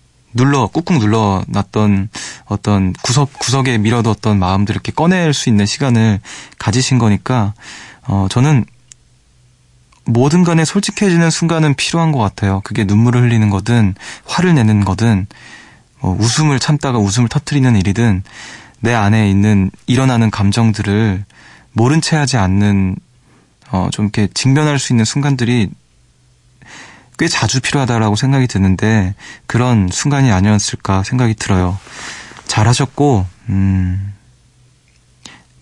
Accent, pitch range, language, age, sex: native, 100-125 Hz, Korean, 20-39, male